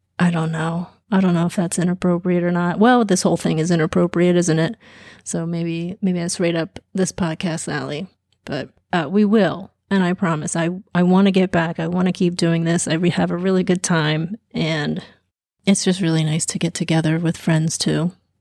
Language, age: English, 30-49